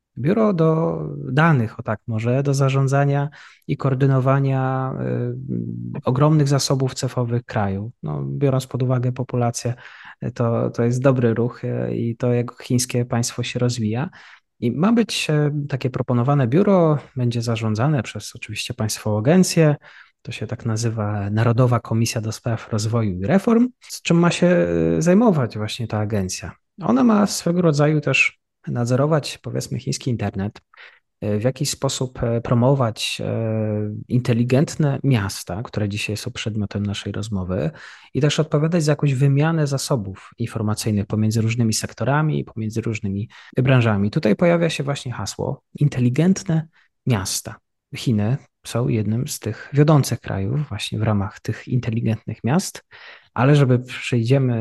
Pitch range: 110-140 Hz